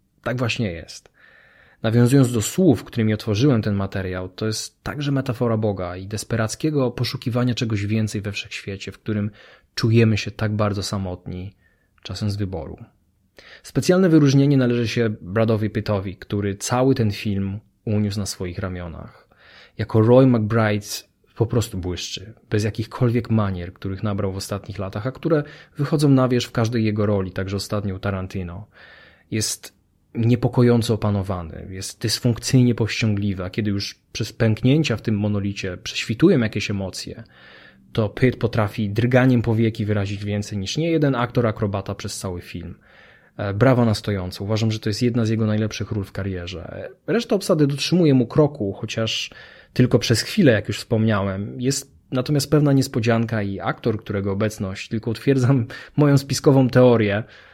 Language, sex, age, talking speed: Polish, male, 20-39, 150 wpm